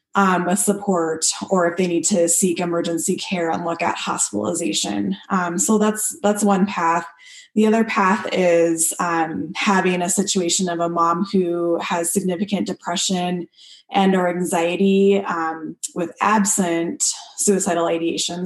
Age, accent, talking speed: 20-39, American, 145 wpm